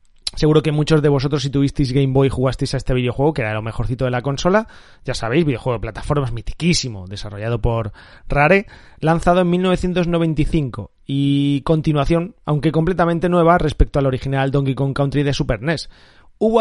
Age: 30-49